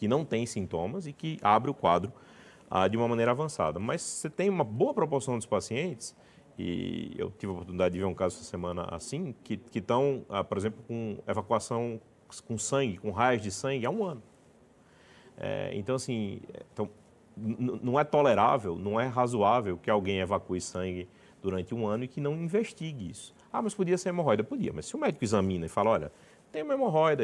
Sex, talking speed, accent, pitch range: male, 200 wpm, Brazilian, 105-140 Hz